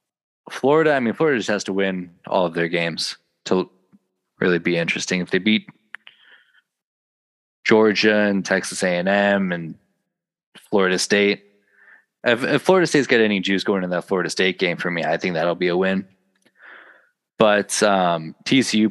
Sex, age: male, 20-39